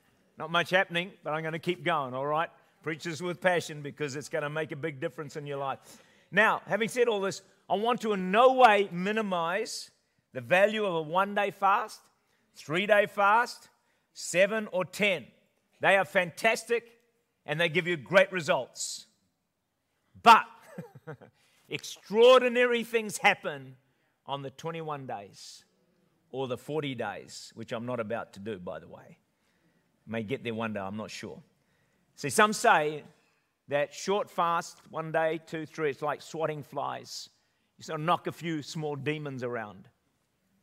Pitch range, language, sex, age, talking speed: 130-185 Hz, English, male, 50-69, 160 wpm